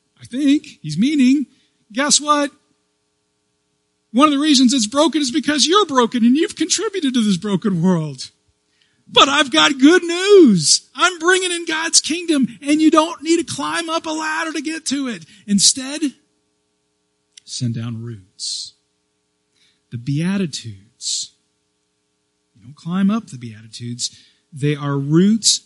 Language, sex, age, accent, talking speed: English, male, 40-59, American, 145 wpm